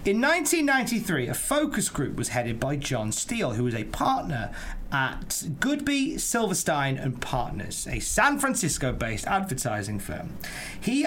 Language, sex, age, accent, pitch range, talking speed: English, male, 30-49, British, 130-185 Hz, 135 wpm